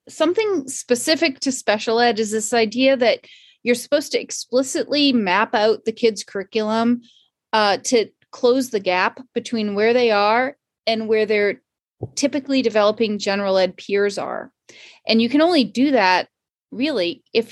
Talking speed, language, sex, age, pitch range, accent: 150 wpm, English, female, 30-49, 210-255 Hz, American